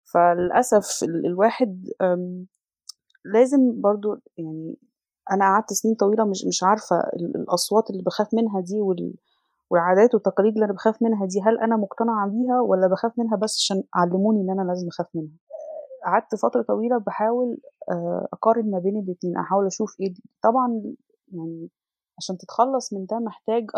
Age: 20-39